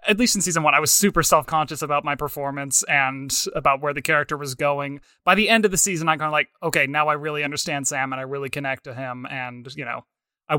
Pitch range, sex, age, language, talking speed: 135-165 Hz, male, 20-39, English, 255 wpm